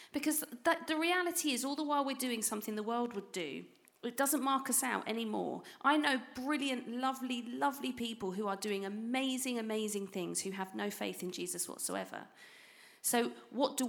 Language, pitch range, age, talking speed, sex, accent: English, 180-255 Hz, 40-59, 185 wpm, female, British